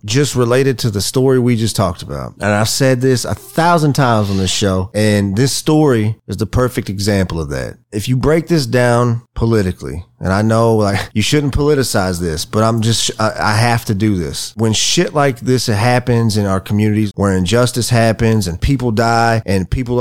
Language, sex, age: English, male, 30-49